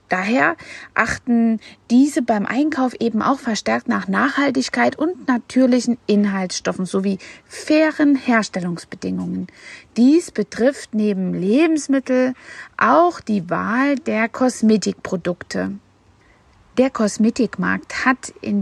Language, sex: German, female